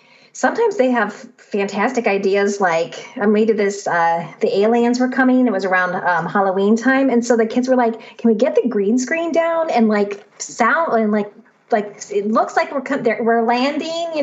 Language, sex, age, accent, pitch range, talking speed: English, female, 30-49, American, 210-260 Hz, 195 wpm